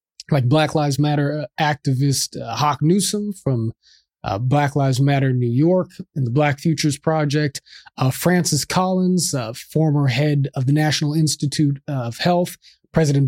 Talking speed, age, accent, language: 150 wpm, 30-49, American, English